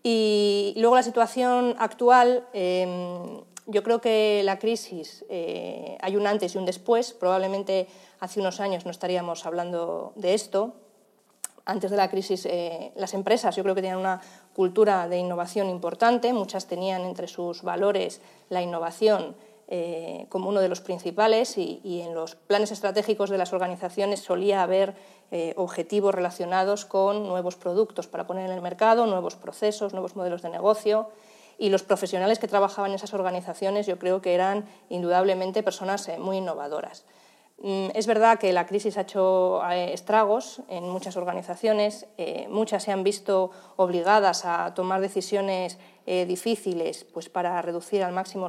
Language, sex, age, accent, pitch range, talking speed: Spanish, female, 30-49, Spanish, 180-210 Hz, 150 wpm